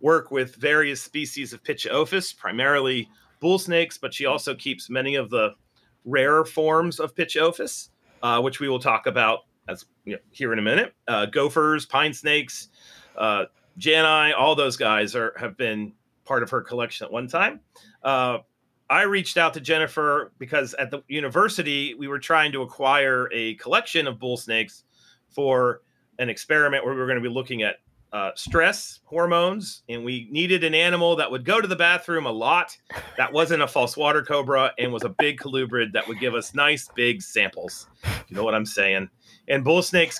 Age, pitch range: 40-59, 125-155 Hz